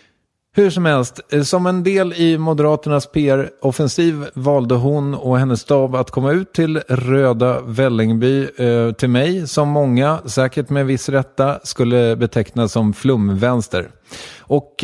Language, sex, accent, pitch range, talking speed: English, male, Swedish, 110-150 Hz, 140 wpm